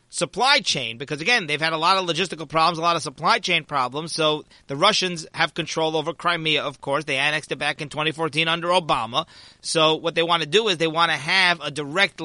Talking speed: 230 wpm